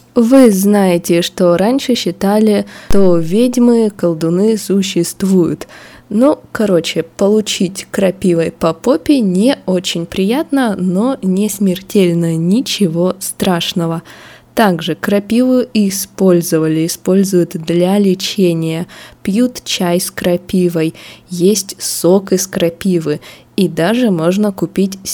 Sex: female